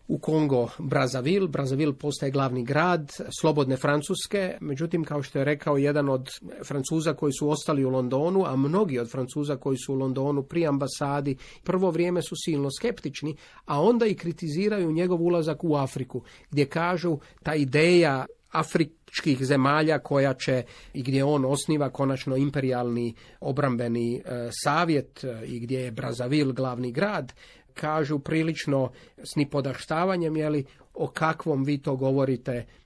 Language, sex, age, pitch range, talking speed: Croatian, male, 40-59, 135-155 Hz, 140 wpm